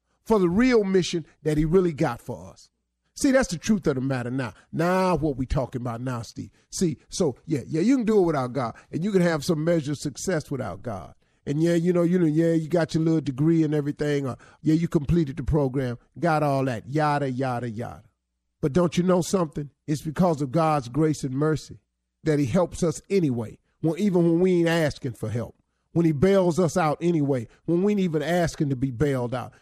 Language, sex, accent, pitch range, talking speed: English, male, American, 130-175 Hz, 225 wpm